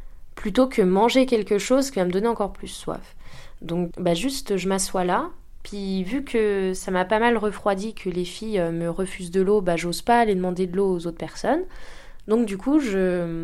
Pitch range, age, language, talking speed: 170-210 Hz, 20-39, French, 215 wpm